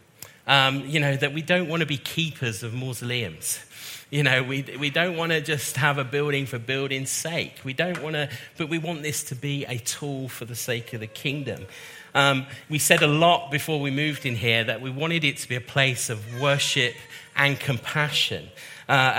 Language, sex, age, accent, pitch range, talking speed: English, male, 40-59, British, 125-155 Hz, 210 wpm